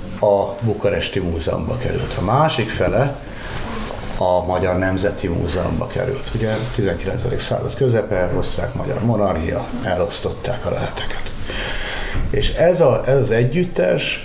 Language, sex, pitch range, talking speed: Hungarian, male, 95-120 Hz, 115 wpm